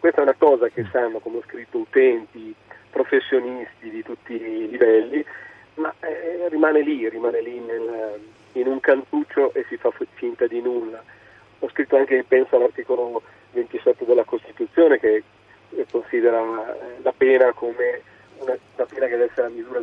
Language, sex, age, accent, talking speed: Italian, male, 40-59, native, 155 wpm